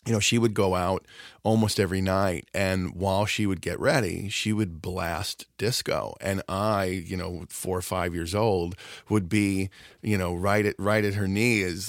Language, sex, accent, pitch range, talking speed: English, male, American, 90-105 Hz, 190 wpm